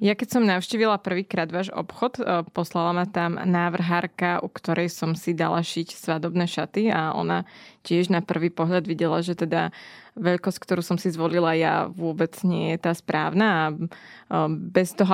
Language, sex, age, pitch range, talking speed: Slovak, female, 20-39, 175-200 Hz, 165 wpm